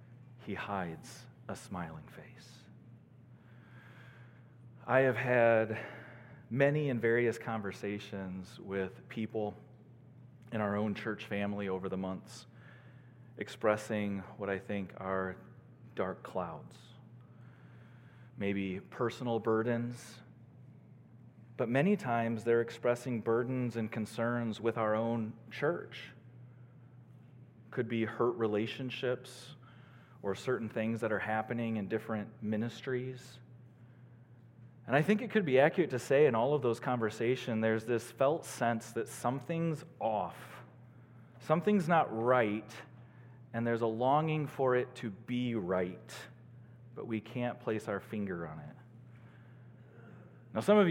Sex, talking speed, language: male, 120 wpm, English